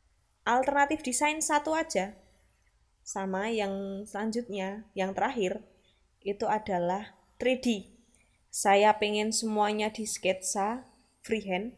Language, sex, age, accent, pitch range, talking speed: Indonesian, female, 20-39, native, 200-245 Hz, 90 wpm